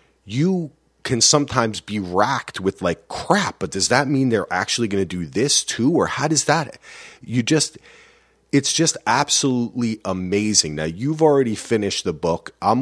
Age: 30-49